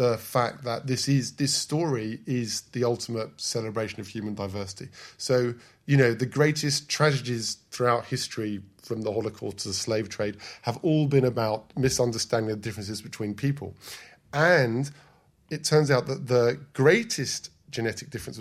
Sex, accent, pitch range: male, British, 110-145 Hz